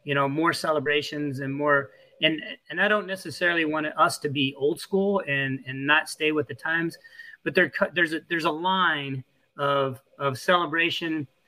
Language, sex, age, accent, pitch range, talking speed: English, male, 30-49, American, 140-185 Hz, 180 wpm